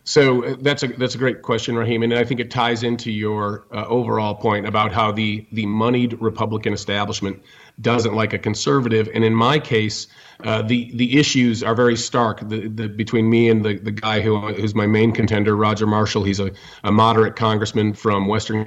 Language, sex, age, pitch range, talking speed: English, male, 40-59, 105-120 Hz, 200 wpm